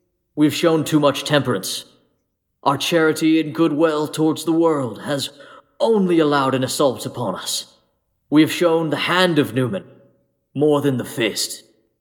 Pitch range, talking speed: 150-185 Hz, 155 wpm